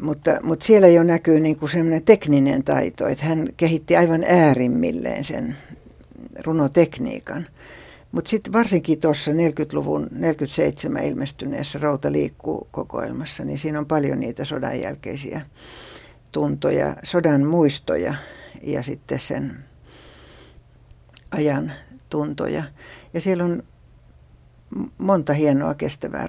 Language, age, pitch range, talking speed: Finnish, 60-79, 140-165 Hz, 105 wpm